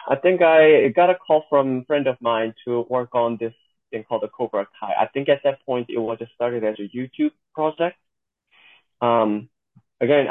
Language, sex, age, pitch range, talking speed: English, male, 30-49, 120-155 Hz, 205 wpm